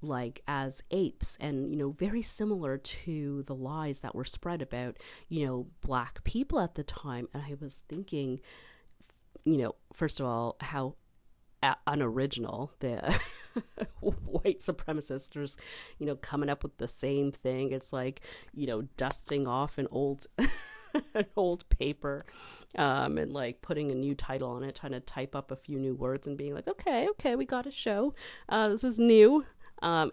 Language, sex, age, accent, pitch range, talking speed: English, female, 40-59, American, 130-155 Hz, 170 wpm